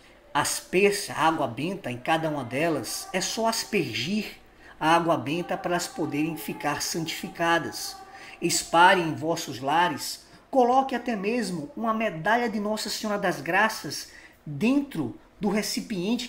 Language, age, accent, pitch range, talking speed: Portuguese, 20-39, Brazilian, 155-220 Hz, 135 wpm